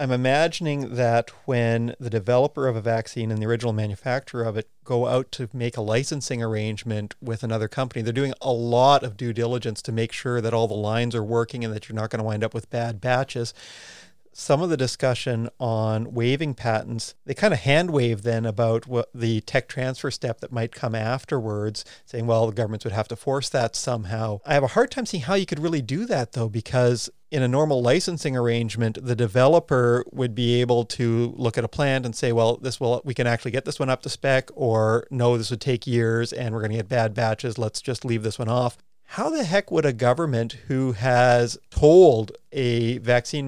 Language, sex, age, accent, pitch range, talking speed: English, male, 40-59, American, 115-130 Hz, 220 wpm